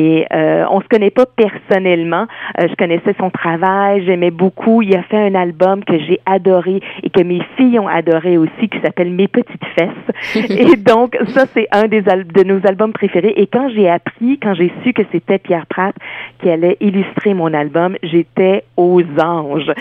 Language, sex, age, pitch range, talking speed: French, female, 40-59, 170-210 Hz, 200 wpm